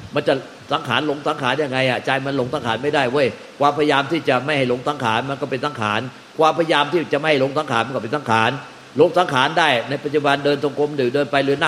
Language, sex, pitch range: Thai, male, 135-170 Hz